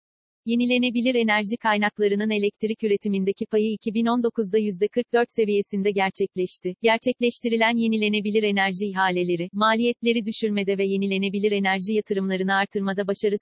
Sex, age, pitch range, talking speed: female, 40-59, 200-225 Hz, 100 wpm